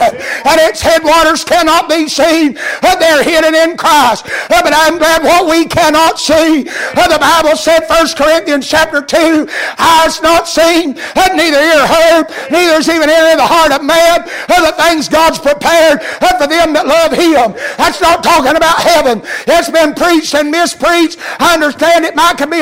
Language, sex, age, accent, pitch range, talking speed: English, male, 60-79, American, 280-335 Hz, 170 wpm